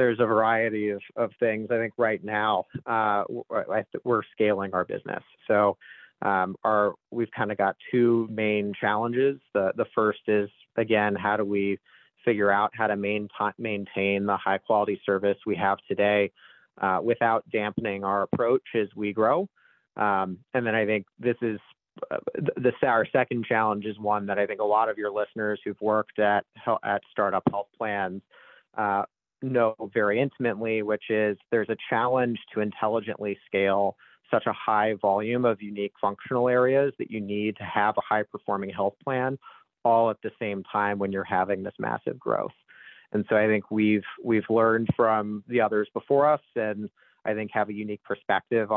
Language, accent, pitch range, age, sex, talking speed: English, American, 100-115 Hz, 30-49, male, 180 wpm